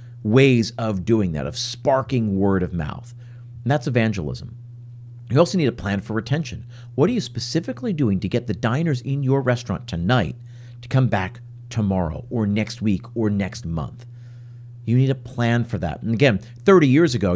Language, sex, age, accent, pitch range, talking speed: English, male, 50-69, American, 110-140 Hz, 185 wpm